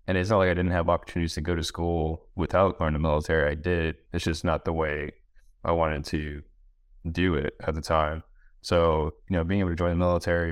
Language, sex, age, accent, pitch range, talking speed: English, male, 20-39, American, 80-90 Hz, 230 wpm